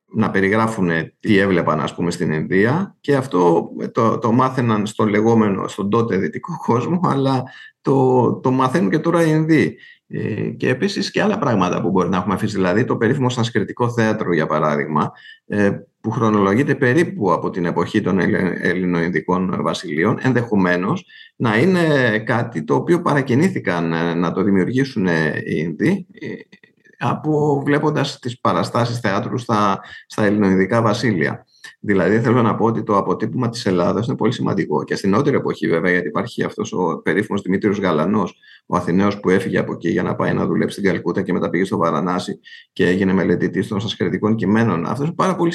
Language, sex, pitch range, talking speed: Greek, male, 95-135 Hz, 165 wpm